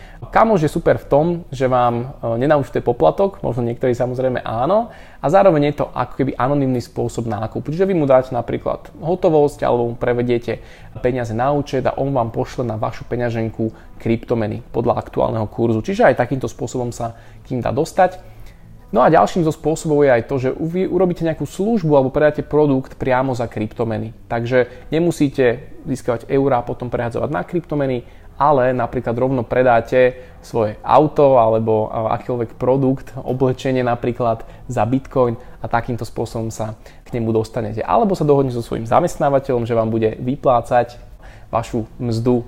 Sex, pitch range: male, 115-140 Hz